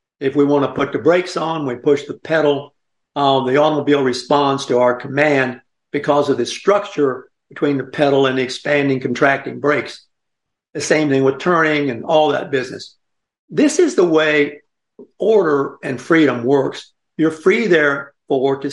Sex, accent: male, American